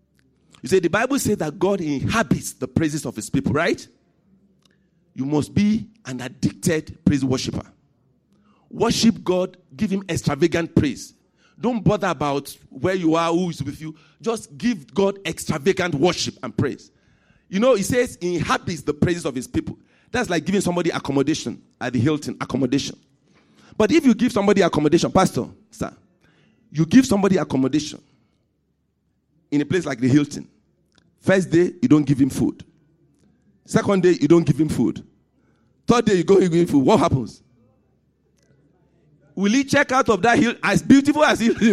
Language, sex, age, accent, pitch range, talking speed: English, male, 50-69, Nigerian, 155-215 Hz, 170 wpm